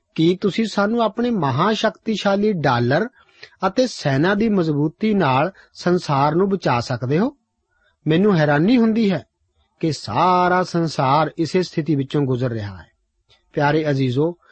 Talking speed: 130 wpm